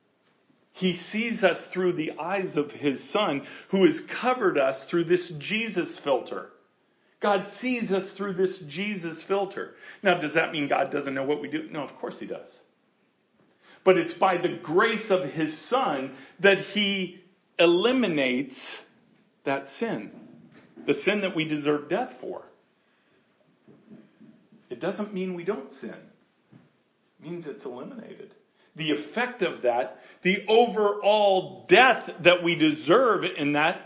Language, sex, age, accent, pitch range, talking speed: English, male, 50-69, American, 140-195 Hz, 145 wpm